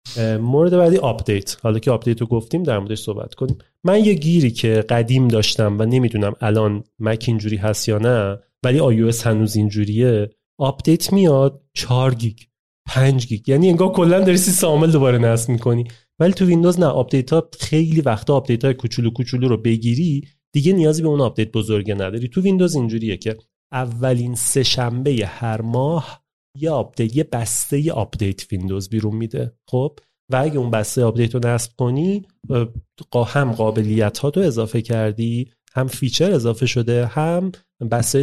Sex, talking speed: male, 155 wpm